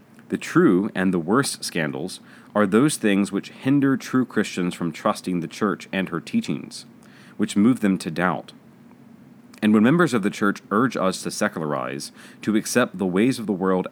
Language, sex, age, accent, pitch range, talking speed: English, male, 30-49, American, 90-115 Hz, 180 wpm